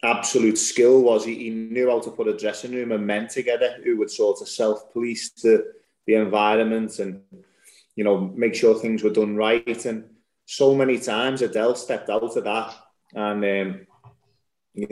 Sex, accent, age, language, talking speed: male, British, 20-39, English, 180 wpm